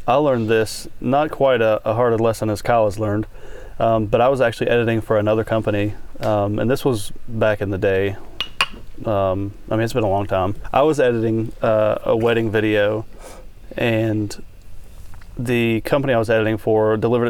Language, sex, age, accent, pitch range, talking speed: English, male, 30-49, American, 105-115 Hz, 185 wpm